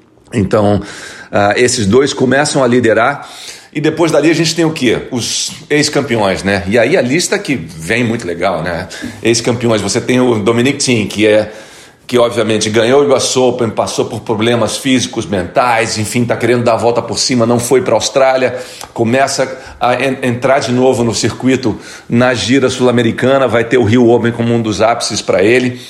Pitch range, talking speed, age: 115-130 Hz, 185 wpm, 40-59